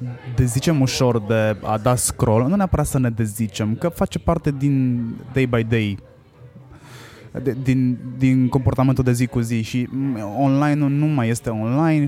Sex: male